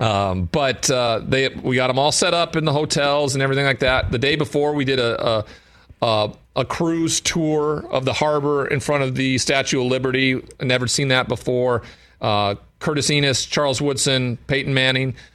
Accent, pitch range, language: American, 105-125 Hz, English